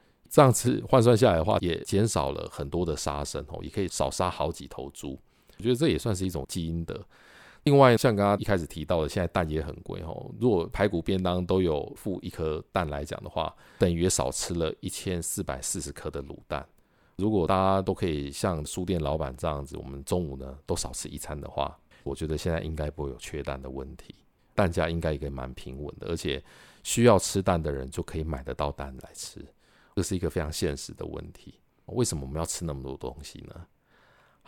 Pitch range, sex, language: 75-95 Hz, male, Chinese